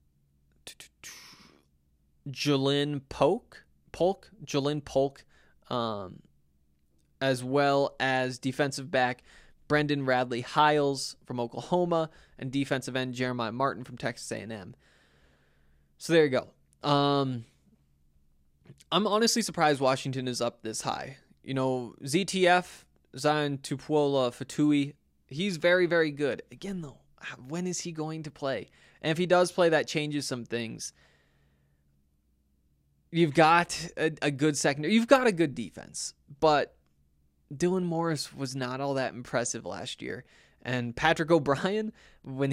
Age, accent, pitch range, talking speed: 20-39, American, 110-155 Hz, 125 wpm